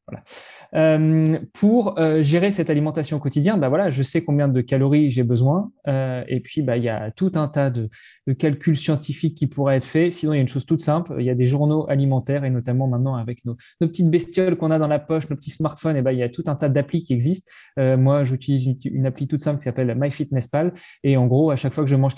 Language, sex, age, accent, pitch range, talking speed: French, male, 20-39, French, 125-155 Hz, 260 wpm